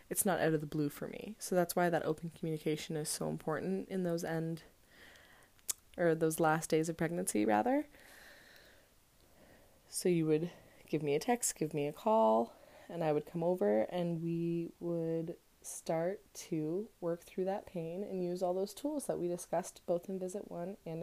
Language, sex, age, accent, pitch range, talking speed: English, female, 20-39, American, 160-190 Hz, 185 wpm